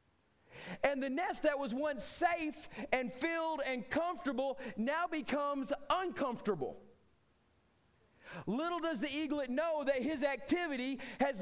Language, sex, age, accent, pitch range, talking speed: English, male, 30-49, American, 225-275 Hz, 120 wpm